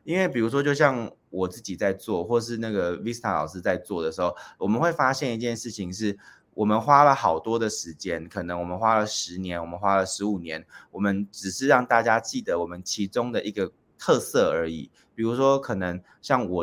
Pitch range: 95-130 Hz